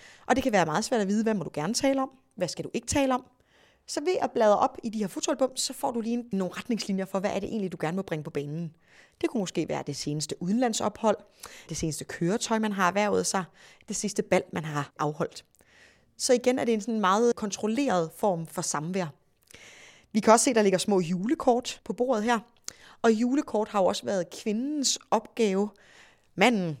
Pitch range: 165-225 Hz